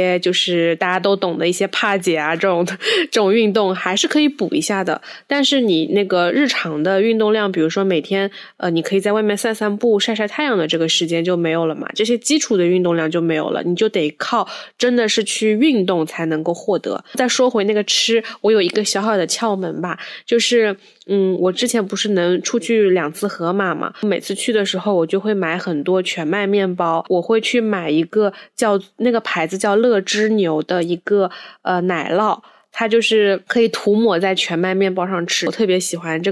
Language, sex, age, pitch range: Chinese, female, 10-29, 175-215 Hz